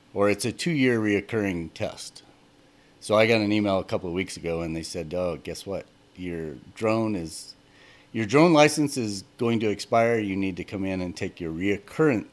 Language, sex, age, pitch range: English, male, 40-59, 95-120 Hz